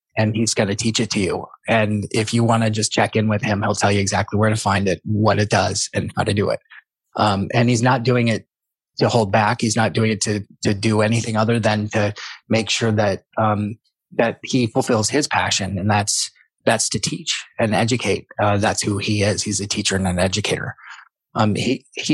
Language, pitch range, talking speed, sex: English, 105-120 Hz, 225 wpm, male